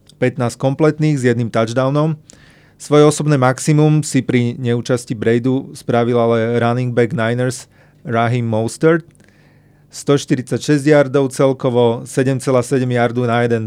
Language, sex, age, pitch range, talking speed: Slovak, male, 30-49, 120-145 Hz, 115 wpm